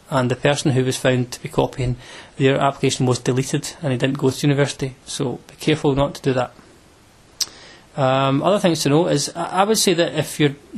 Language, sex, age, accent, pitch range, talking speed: English, male, 30-49, British, 135-155 Hz, 215 wpm